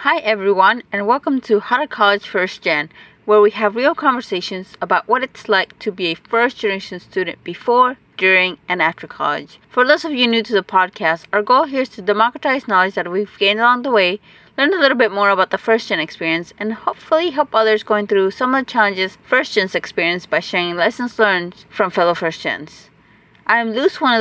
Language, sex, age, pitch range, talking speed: English, female, 30-49, 195-250 Hz, 210 wpm